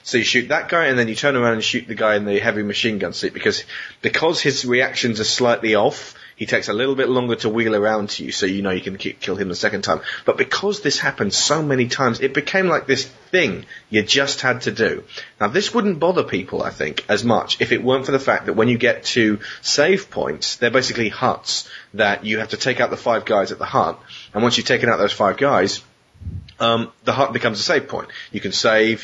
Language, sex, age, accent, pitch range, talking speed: English, male, 30-49, British, 105-135 Hz, 250 wpm